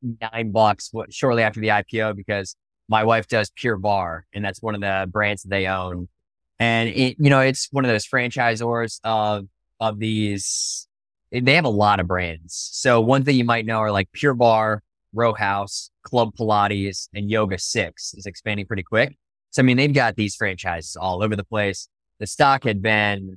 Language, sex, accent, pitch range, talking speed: English, male, American, 100-115 Hz, 195 wpm